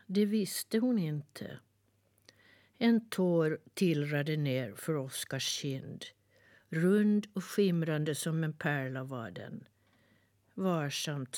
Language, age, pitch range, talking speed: Swedish, 60-79, 130-190 Hz, 105 wpm